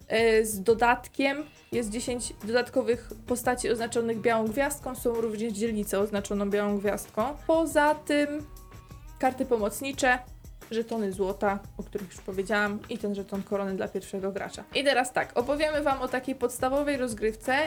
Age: 20-39